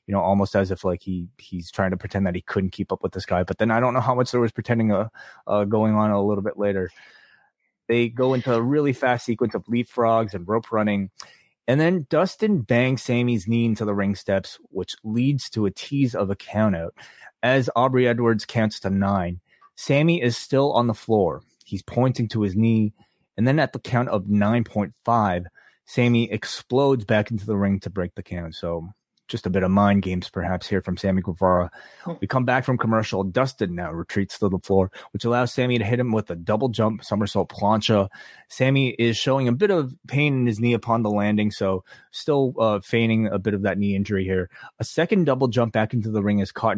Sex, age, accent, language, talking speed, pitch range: male, 20-39, American, English, 220 wpm, 100-120 Hz